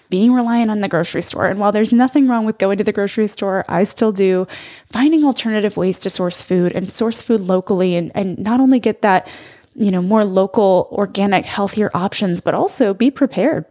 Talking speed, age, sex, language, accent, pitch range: 205 wpm, 20-39, female, English, American, 180-225 Hz